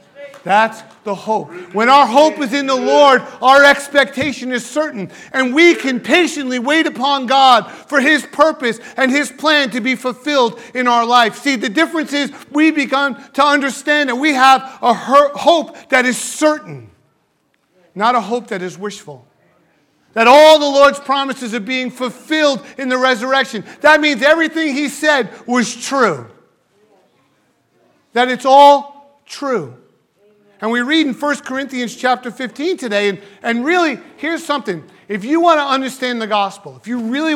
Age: 40-59